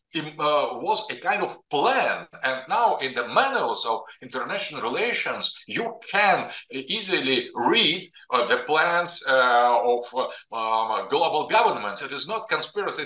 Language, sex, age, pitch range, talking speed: English, male, 50-69, 145-215 Hz, 145 wpm